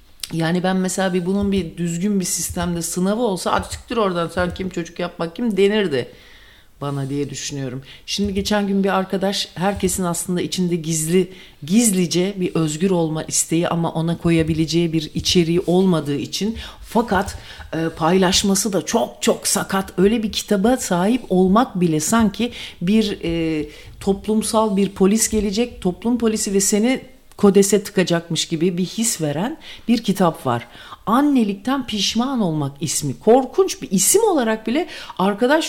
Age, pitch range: 50-69, 165-220 Hz